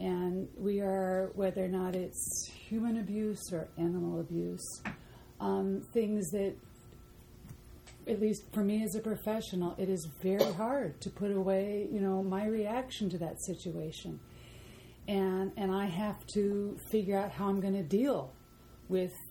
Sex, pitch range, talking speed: female, 185-215 Hz, 150 wpm